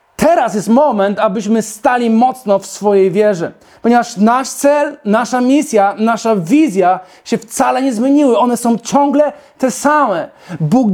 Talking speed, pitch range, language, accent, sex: 145 wpm, 200-265 Hz, Polish, native, male